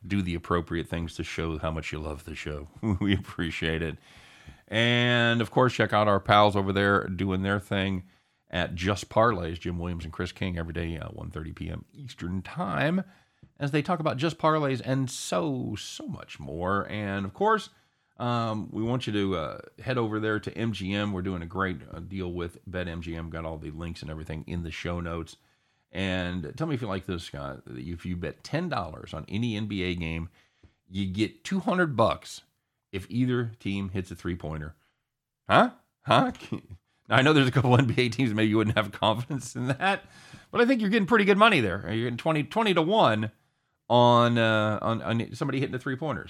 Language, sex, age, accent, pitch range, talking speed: English, male, 40-59, American, 90-120 Hz, 200 wpm